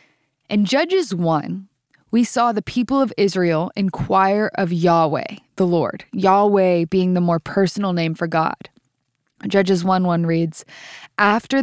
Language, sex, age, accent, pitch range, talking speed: English, female, 20-39, American, 170-215 Hz, 140 wpm